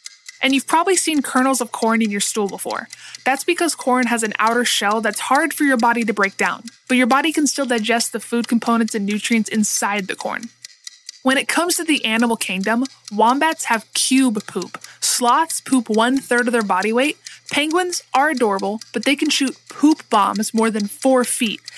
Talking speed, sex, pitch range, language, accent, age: 200 wpm, female, 225-285 Hz, English, American, 20-39